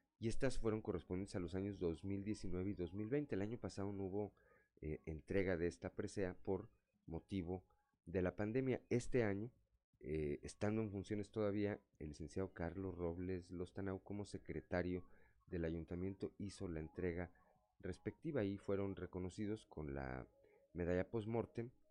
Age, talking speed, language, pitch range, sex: 40-59, 140 wpm, Spanish, 85-105 Hz, male